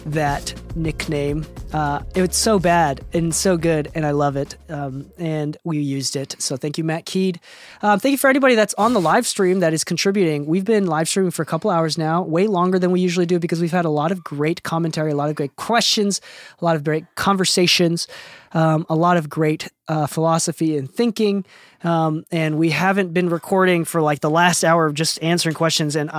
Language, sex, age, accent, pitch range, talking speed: English, male, 20-39, American, 155-195 Hz, 220 wpm